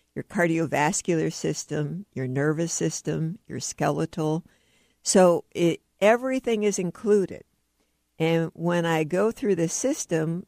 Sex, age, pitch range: female, 60-79, 155-195 Hz